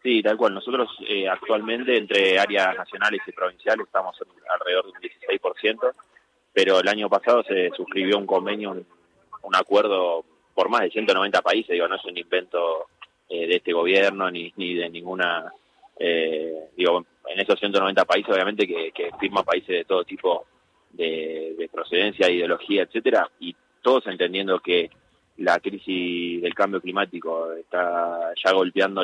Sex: male